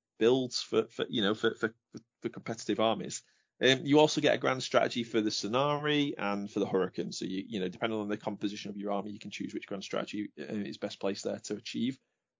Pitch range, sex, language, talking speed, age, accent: 125-195 Hz, male, English, 230 wpm, 30-49, British